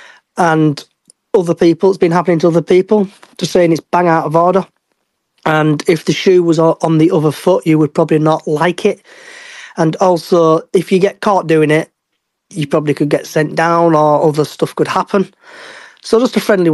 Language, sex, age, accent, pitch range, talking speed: English, male, 30-49, British, 160-195 Hz, 195 wpm